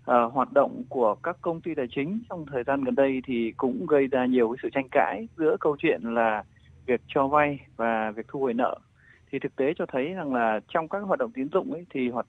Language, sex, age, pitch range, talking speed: Vietnamese, male, 20-39, 120-160 Hz, 250 wpm